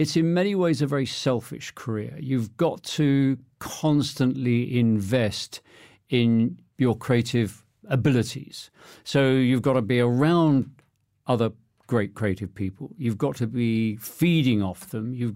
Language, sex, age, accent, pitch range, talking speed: English, male, 50-69, British, 115-150 Hz, 135 wpm